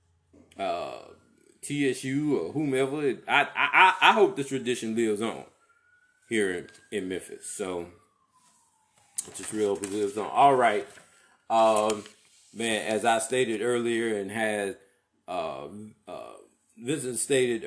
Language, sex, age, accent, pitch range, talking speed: English, male, 30-49, American, 100-130 Hz, 125 wpm